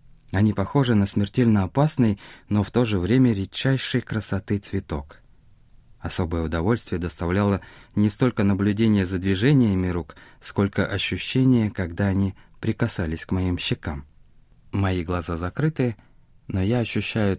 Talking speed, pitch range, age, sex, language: 125 wpm, 90-120 Hz, 20-39, male, Russian